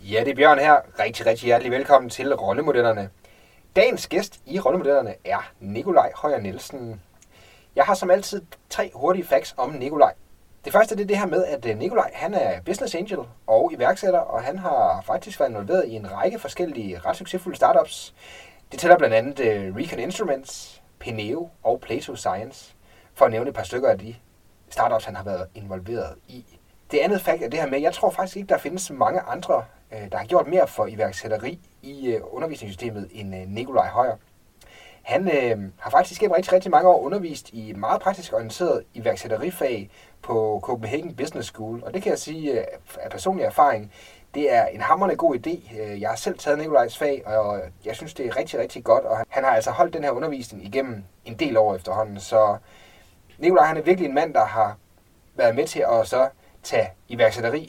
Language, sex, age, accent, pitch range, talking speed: Danish, male, 30-49, native, 105-160 Hz, 190 wpm